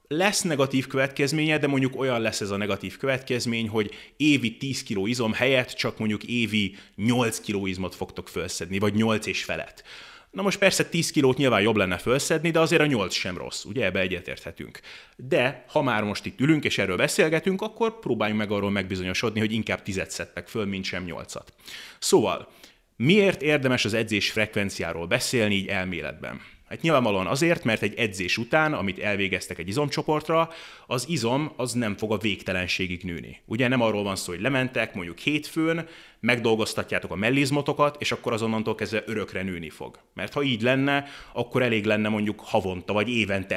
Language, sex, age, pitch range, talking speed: Hungarian, male, 30-49, 100-135 Hz, 175 wpm